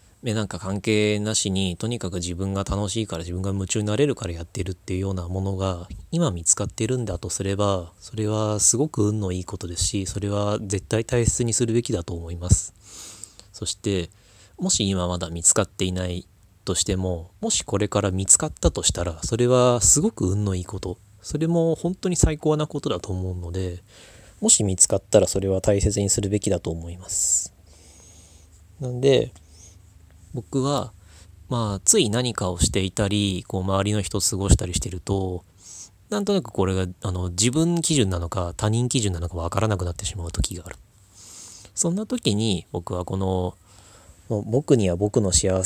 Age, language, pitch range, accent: 20-39, Japanese, 90-110 Hz, native